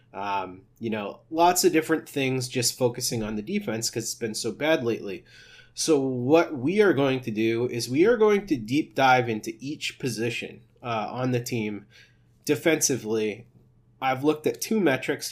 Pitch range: 115-135 Hz